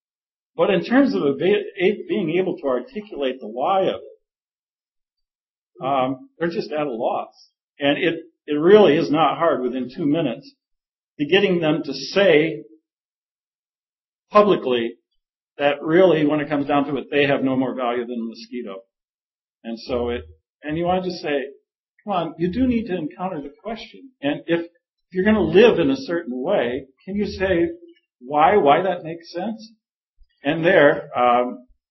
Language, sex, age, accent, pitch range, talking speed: English, male, 50-69, American, 130-210 Hz, 170 wpm